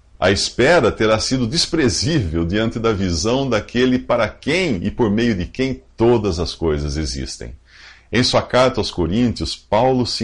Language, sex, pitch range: English, male, 85-120 Hz